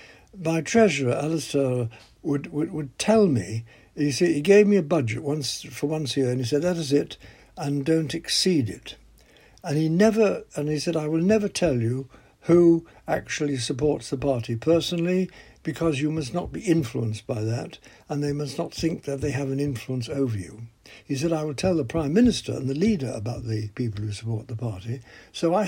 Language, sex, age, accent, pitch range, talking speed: English, male, 60-79, British, 120-165 Hz, 205 wpm